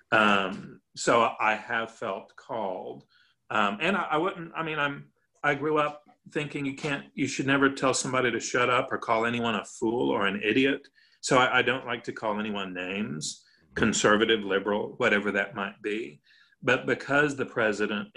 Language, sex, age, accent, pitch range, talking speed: English, male, 40-59, American, 100-125 Hz, 180 wpm